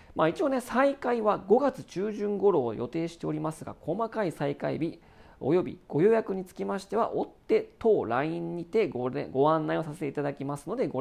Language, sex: Japanese, male